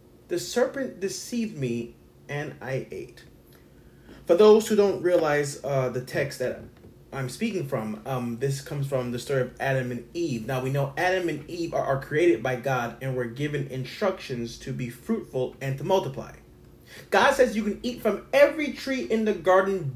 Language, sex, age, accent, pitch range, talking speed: English, male, 30-49, American, 140-215 Hz, 185 wpm